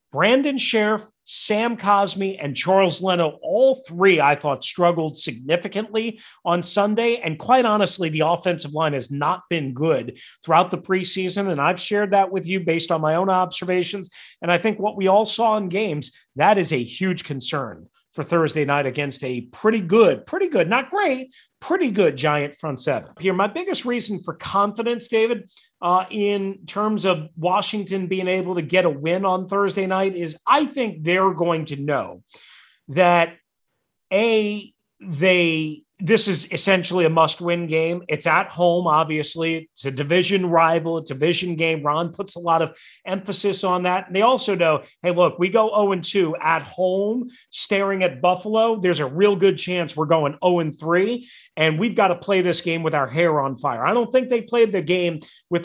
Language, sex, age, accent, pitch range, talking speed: English, male, 40-59, American, 160-205 Hz, 180 wpm